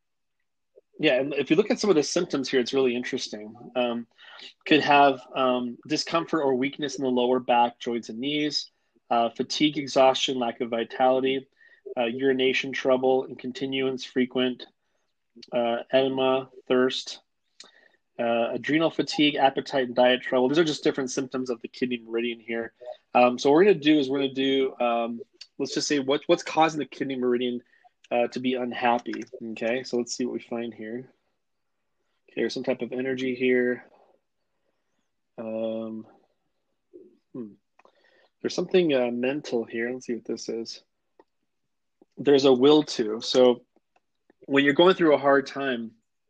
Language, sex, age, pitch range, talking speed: English, male, 20-39, 120-140 Hz, 160 wpm